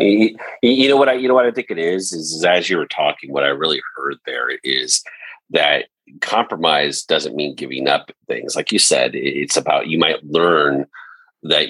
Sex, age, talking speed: male, 40-59, 195 wpm